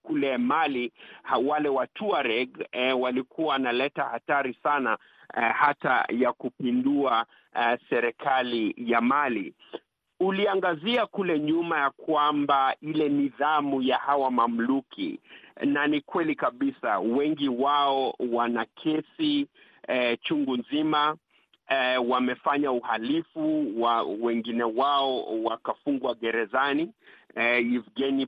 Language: Swahili